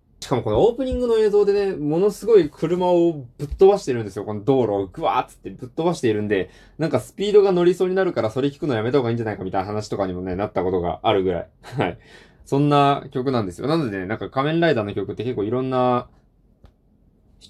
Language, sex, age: Japanese, male, 20-39